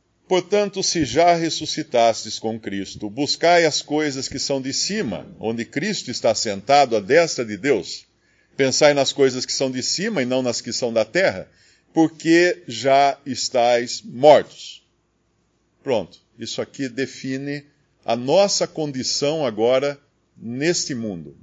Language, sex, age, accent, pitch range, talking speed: Portuguese, male, 50-69, Brazilian, 120-160 Hz, 135 wpm